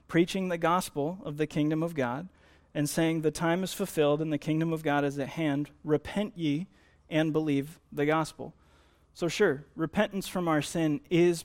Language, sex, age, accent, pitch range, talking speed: English, male, 30-49, American, 145-165 Hz, 185 wpm